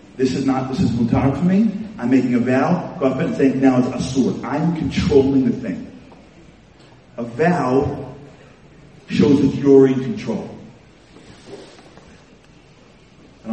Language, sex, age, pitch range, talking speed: English, male, 40-59, 115-150 Hz, 130 wpm